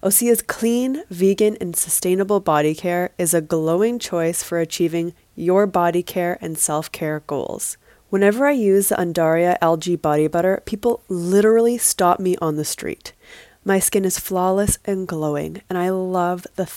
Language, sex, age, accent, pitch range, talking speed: English, female, 20-39, American, 165-205 Hz, 160 wpm